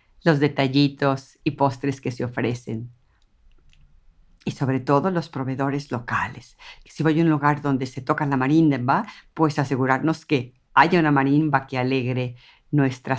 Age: 50-69